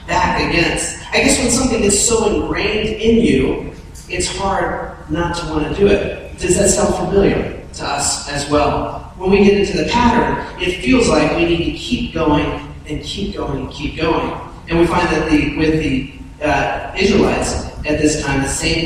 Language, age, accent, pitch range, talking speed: English, 40-59, American, 150-210 Hz, 195 wpm